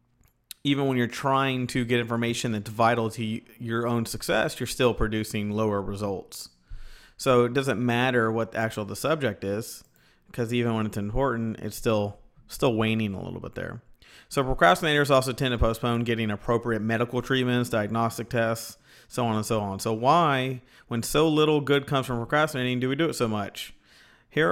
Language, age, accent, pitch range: English, 40-59, American, 110-130 Hz